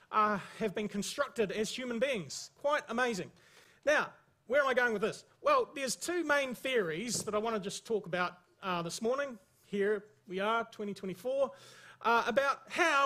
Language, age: English, 40-59